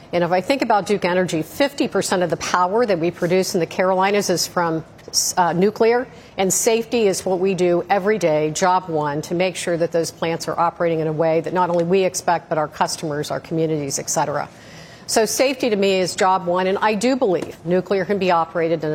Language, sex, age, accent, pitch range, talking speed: English, female, 50-69, American, 170-220 Hz, 225 wpm